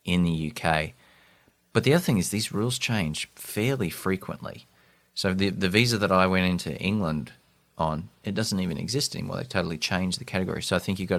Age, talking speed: 30-49, 205 wpm